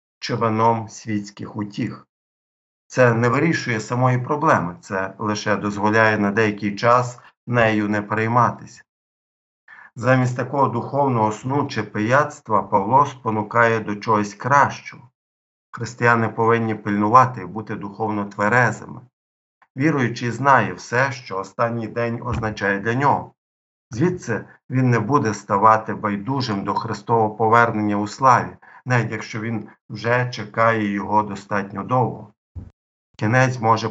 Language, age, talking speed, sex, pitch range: Ukrainian, 50-69, 115 wpm, male, 105-125 Hz